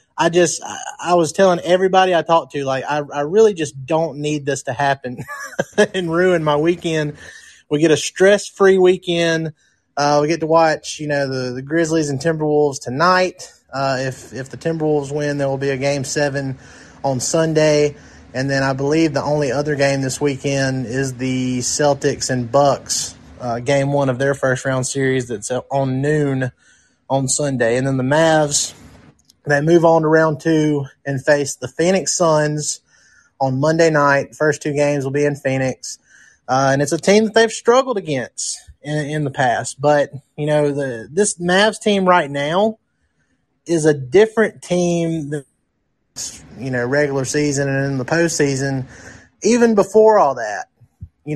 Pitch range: 135-165 Hz